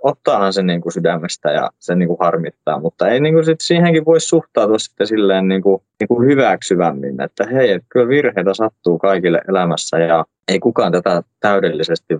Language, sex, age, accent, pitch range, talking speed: Finnish, male, 20-39, native, 85-105 Hz, 175 wpm